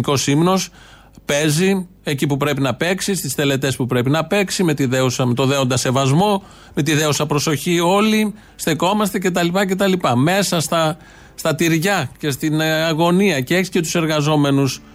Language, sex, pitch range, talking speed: Greek, male, 135-170 Hz, 165 wpm